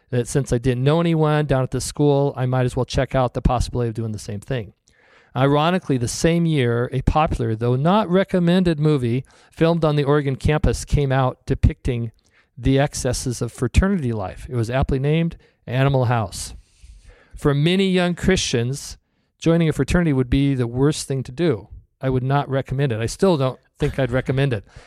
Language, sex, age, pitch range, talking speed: English, male, 40-59, 120-150 Hz, 190 wpm